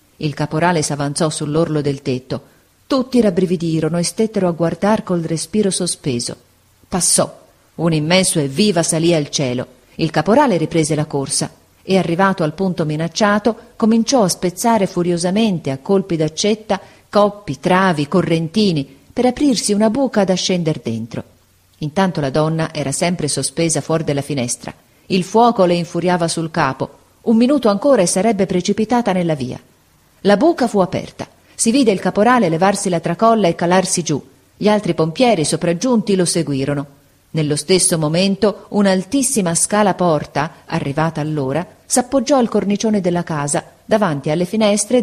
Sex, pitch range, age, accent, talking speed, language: female, 155-210 Hz, 40-59, native, 145 wpm, Italian